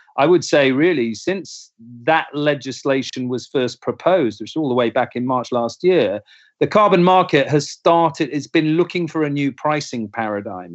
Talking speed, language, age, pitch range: 185 wpm, English, 40-59, 115-145 Hz